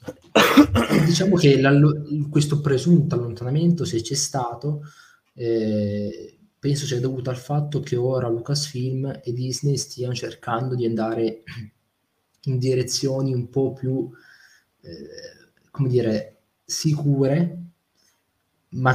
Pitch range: 110-140 Hz